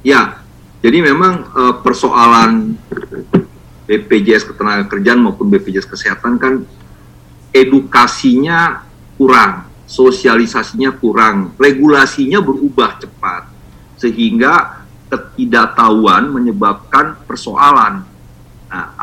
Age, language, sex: 50-69, English, male